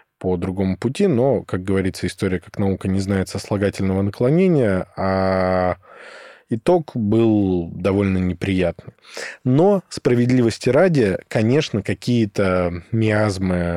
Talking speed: 105 wpm